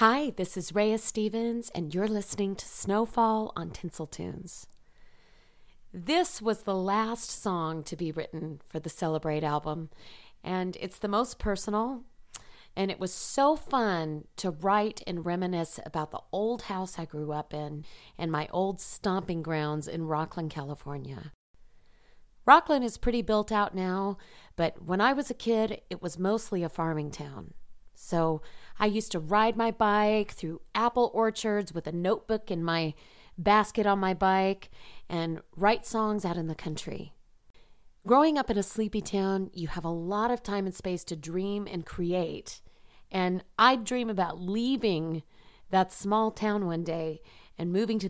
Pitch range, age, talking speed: 165-215 Hz, 30-49, 165 wpm